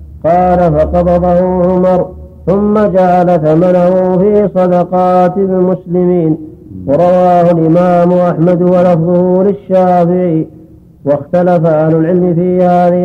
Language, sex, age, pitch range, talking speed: Arabic, male, 50-69, 170-180 Hz, 85 wpm